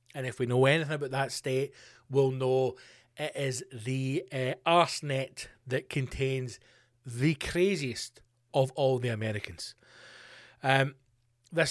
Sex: male